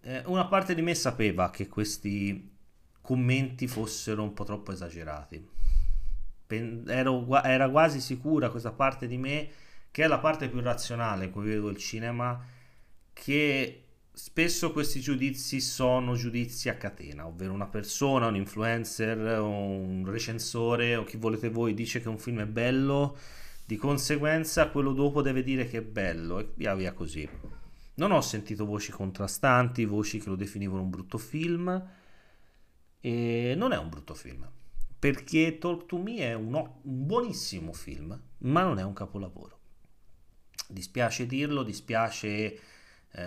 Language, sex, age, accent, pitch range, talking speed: Italian, male, 30-49, native, 100-130 Hz, 140 wpm